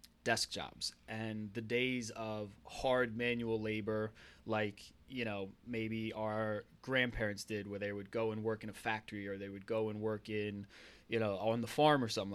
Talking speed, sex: 190 wpm, male